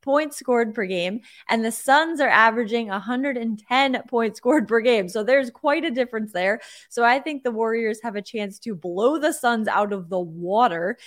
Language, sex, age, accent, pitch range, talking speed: English, female, 20-39, American, 195-250 Hz, 195 wpm